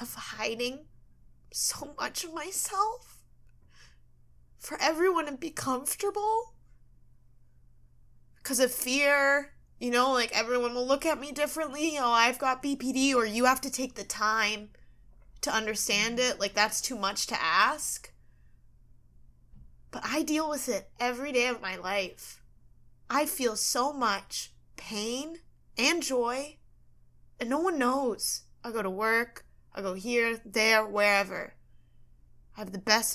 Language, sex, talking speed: English, female, 140 wpm